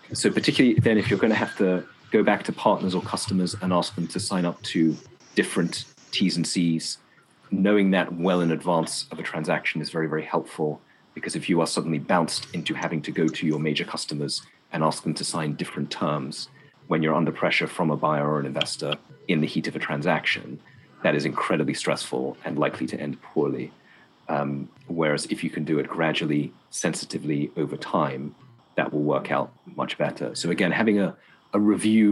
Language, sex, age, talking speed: English, male, 40-59, 200 wpm